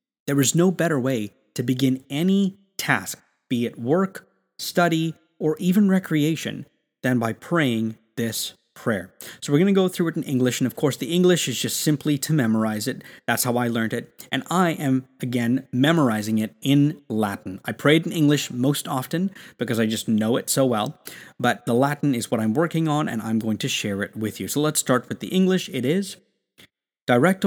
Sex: male